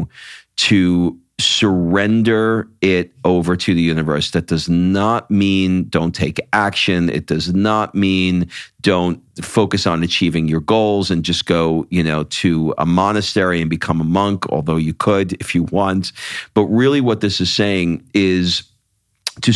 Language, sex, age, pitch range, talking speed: English, male, 40-59, 85-110 Hz, 155 wpm